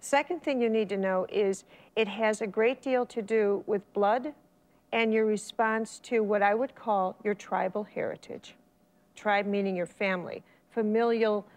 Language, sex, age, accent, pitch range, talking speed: English, female, 50-69, American, 205-240 Hz, 165 wpm